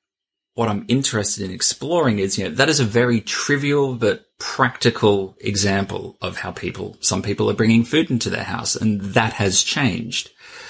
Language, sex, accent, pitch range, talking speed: English, male, Australian, 105-135 Hz, 175 wpm